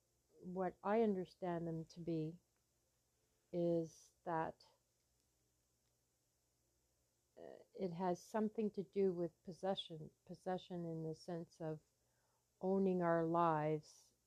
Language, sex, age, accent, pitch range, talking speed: English, female, 60-79, American, 150-180 Hz, 95 wpm